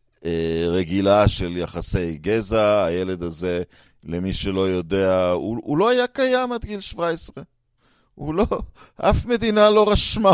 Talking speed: 135 wpm